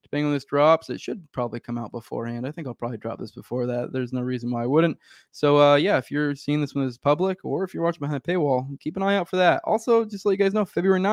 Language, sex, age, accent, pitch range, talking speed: English, male, 20-39, American, 125-170 Hz, 290 wpm